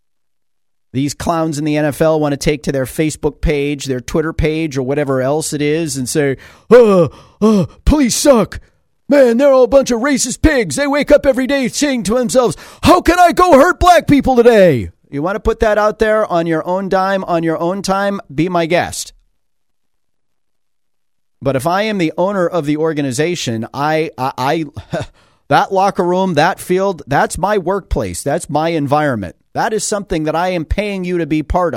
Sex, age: male, 40-59